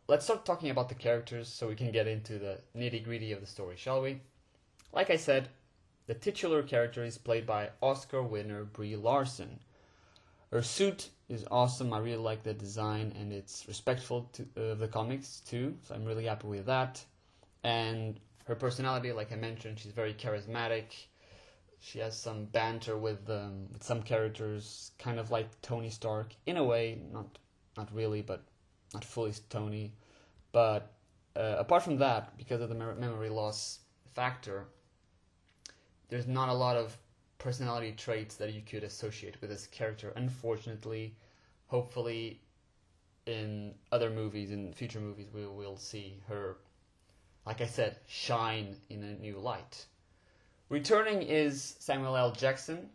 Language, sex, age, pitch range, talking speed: English, male, 20-39, 105-120 Hz, 155 wpm